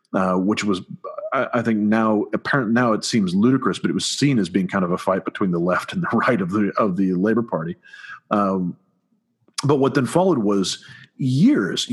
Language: English